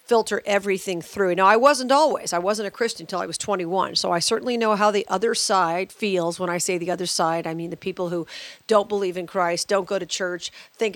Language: English